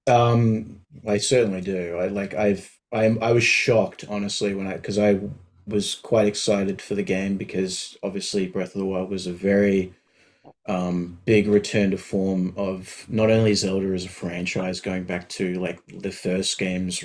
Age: 20-39